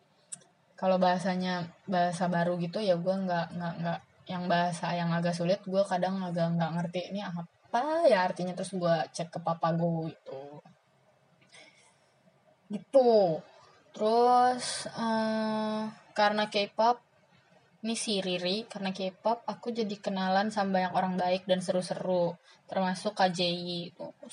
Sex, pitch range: female, 175-215 Hz